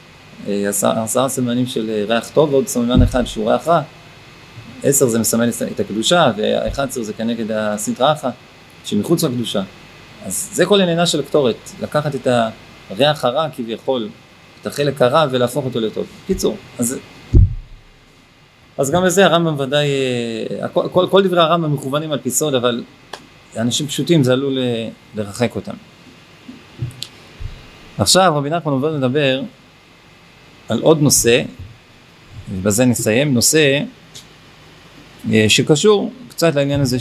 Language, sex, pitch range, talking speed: Hebrew, male, 115-155 Hz, 125 wpm